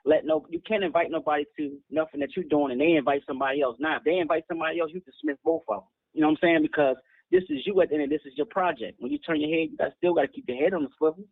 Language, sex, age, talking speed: English, male, 20-39, 330 wpm